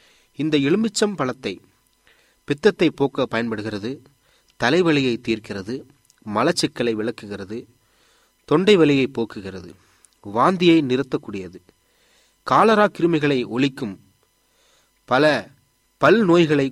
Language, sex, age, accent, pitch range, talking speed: Tamil, male, 30-49, native, 110-155 Hz, 70 wpm